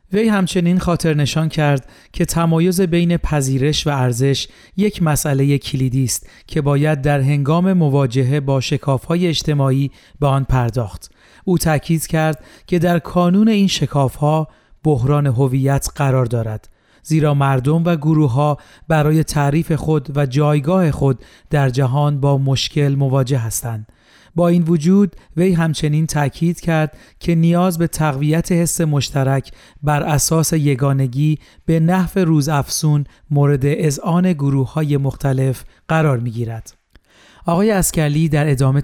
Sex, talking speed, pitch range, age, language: male, 135 wpm, 135-165 Hz, 40-59, Persian